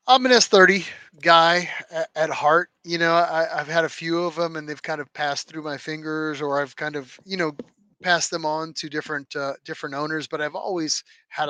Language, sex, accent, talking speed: English, male, American, 215 wpm